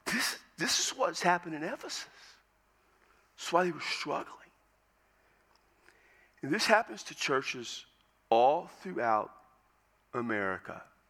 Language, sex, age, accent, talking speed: English, male, 50-69, American, 110 wpm